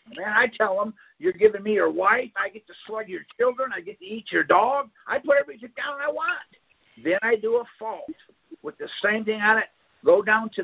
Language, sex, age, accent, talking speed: English, male, 50-69, American, 230 wpm